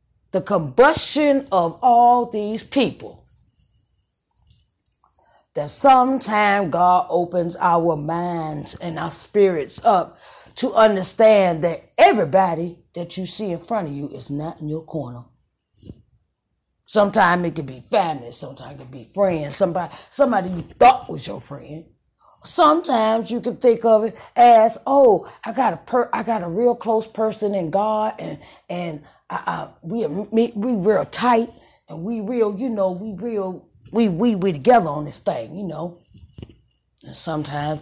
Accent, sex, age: American, female, 30-49